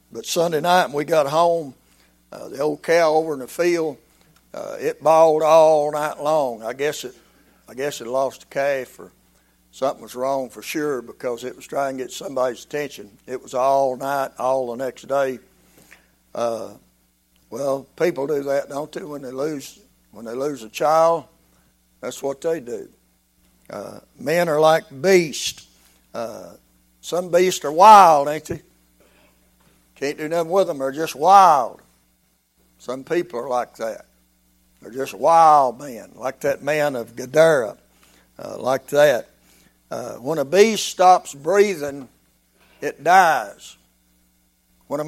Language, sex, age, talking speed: English, male, 60-79, 155 wpm